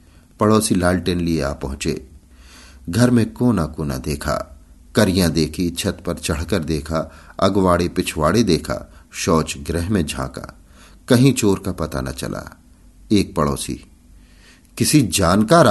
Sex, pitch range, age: male, 80-115 Hz, 50-69